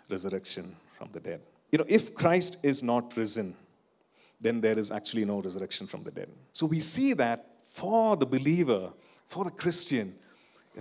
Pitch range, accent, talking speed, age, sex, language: 110-155 Hz, Indian, 170 wpm, 40-59, male, English